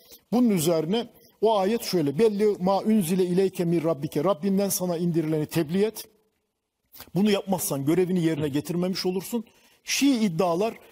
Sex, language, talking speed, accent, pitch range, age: male, Turkish, 130 wpm, native, 165-215 Hz, 50-69